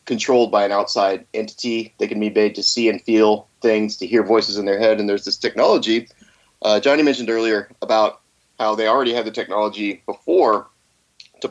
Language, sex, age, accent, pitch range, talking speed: English, male, 30-49, American, 105-120 Hz, 195 wpm